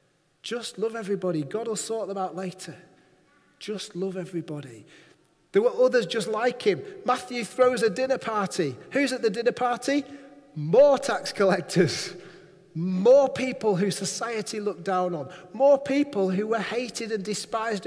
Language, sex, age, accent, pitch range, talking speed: English, male, 40-59, British, 185-260 Hz, 150 wpm